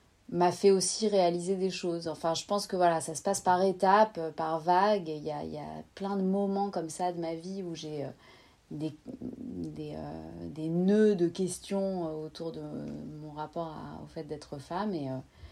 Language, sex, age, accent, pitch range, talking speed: French, female, 30-49, French, 150-180 Hz, 175 wpm